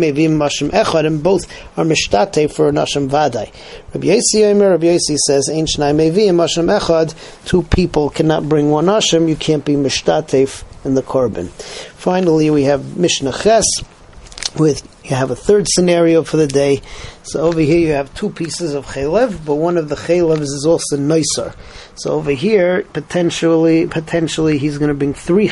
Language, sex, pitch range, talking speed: English, male, 145-170 Hz, 155 wpm